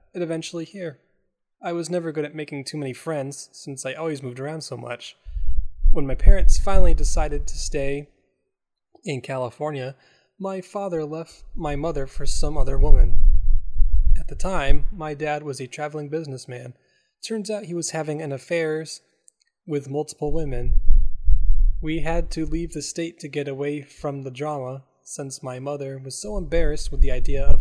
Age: 20-39